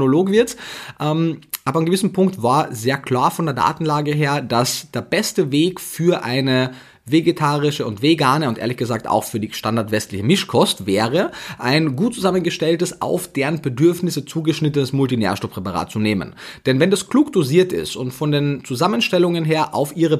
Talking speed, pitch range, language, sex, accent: 155 wpm, 130-170 Hz, German, male, German